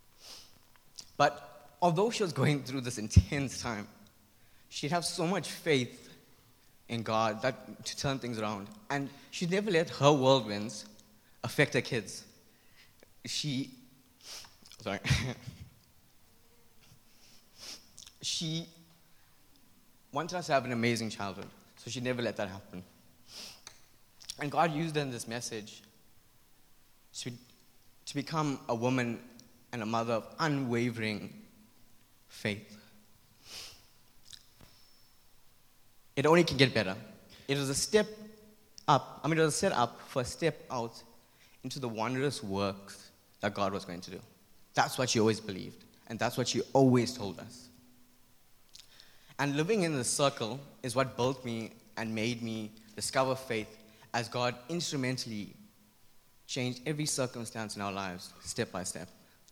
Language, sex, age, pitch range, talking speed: English, male, 20-39, 110-135 Hz, 135 wpm